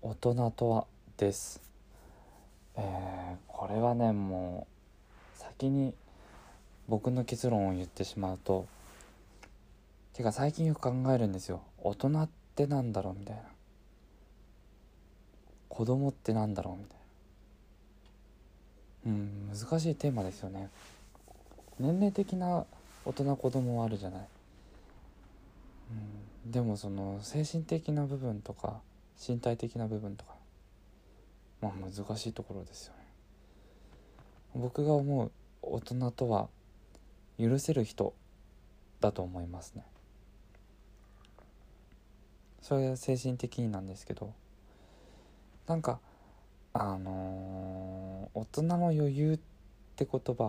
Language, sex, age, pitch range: Japanese, male, 20-39, 95-120 Hz